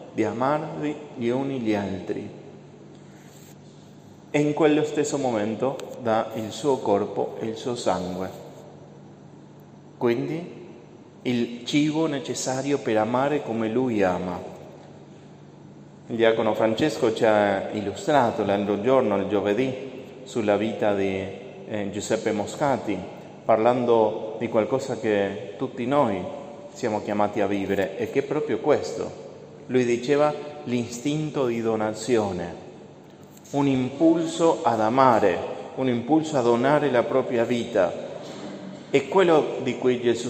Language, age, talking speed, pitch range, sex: Italian, 30-49, 120 wpm, 110-140 Hz, male